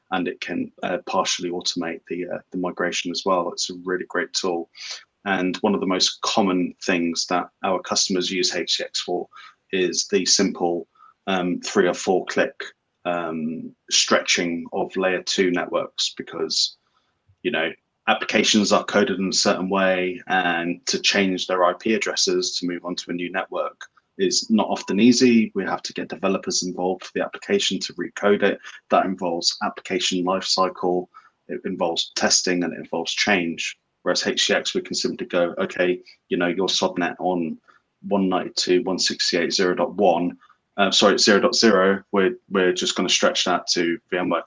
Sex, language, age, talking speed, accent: male, English, 20-39, 160 wpm, British